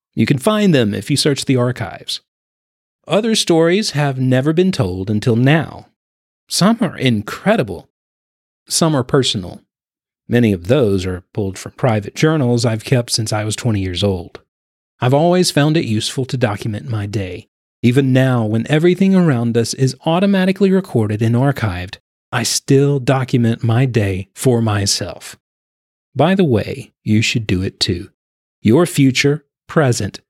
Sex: male